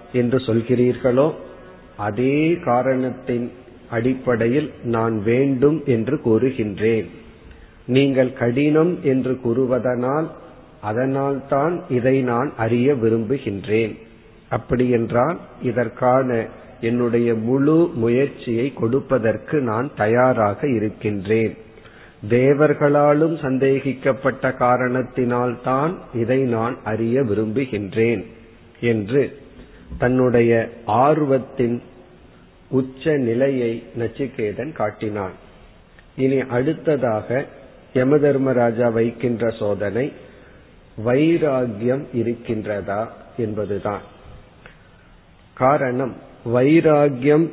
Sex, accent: male, native